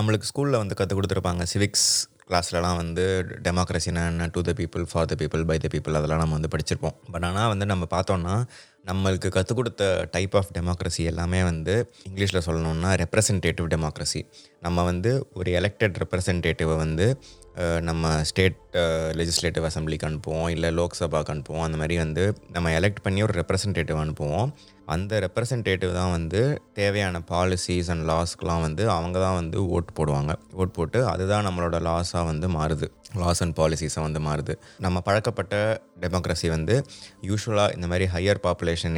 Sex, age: male, 20-39